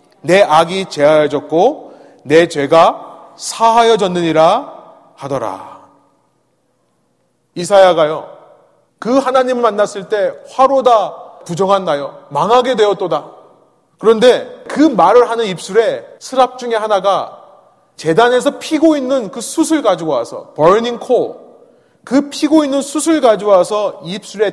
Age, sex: 30-49, male